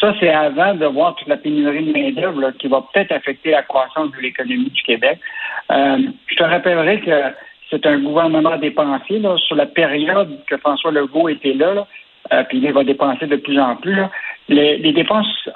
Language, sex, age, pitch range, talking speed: French, male, 60-79, 140-195 Hz, 195 wpm